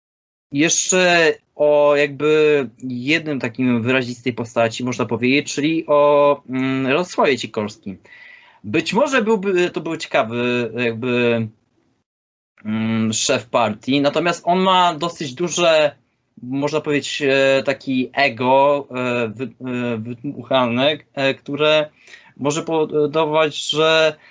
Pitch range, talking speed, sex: 130-155 Hz, 85 wpm, male